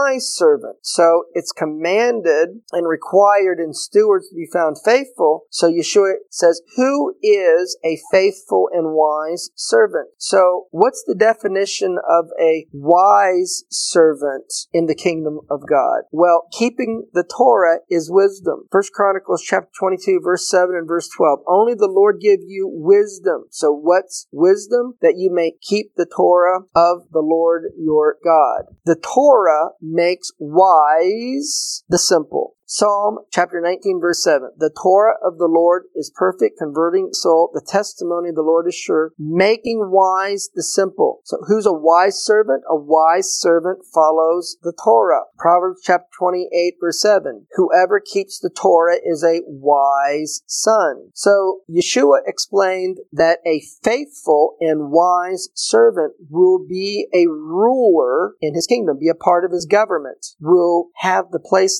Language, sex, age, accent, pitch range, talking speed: English, male, 50-69, American, 165-220 Hz, 145 wpm